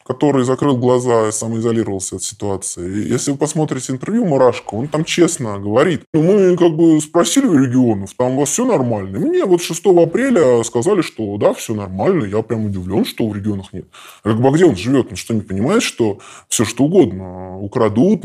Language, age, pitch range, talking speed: Russian, 20-39, 105-155 Hz, 190 wpm